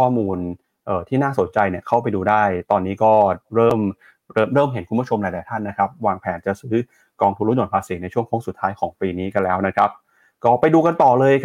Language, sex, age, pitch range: Thai, male, 20-39, 100-125 Hz